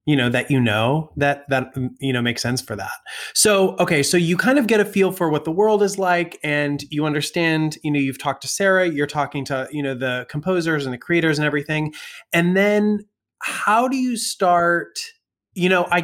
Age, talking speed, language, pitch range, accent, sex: 20-39, 215 wpm, English, 125-175 Hz, American, male